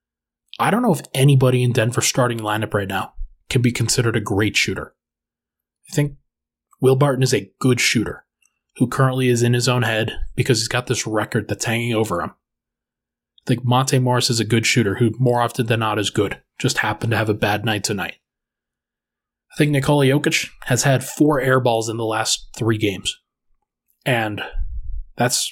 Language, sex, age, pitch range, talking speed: English, male, 20-39, 80-130 Hz, 190 wpm